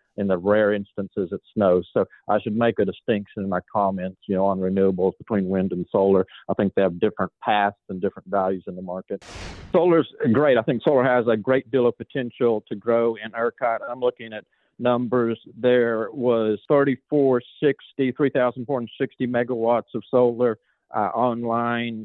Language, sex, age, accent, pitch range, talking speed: English, male, 40-59, American, 110-130 Hz, 170 wpm